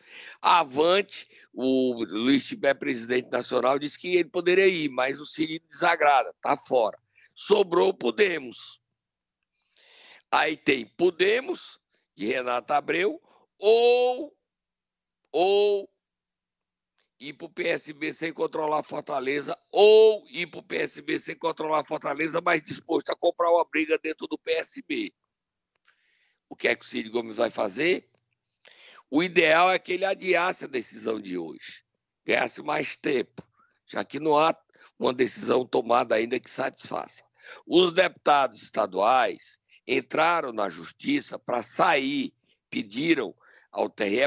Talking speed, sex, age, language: 130 wpm, male, 60-79, Portuguese